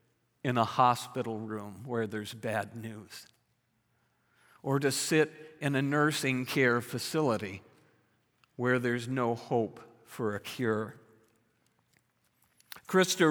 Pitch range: 120-155 Hz